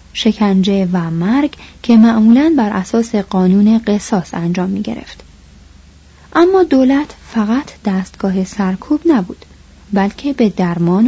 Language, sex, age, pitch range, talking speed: Persian, female, 30-49, 185-235 Hz, 115 wpm